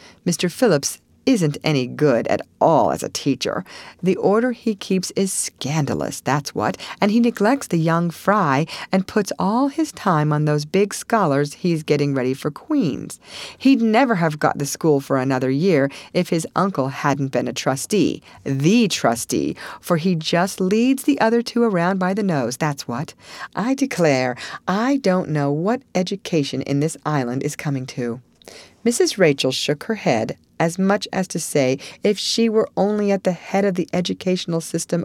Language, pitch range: English, 145-205 Hz